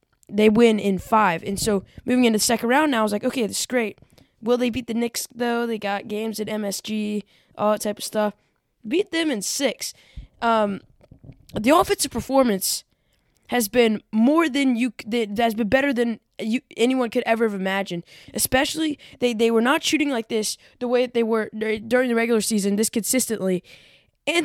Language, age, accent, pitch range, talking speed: English, 10-29, American, 215-260 Hz, 195 wpm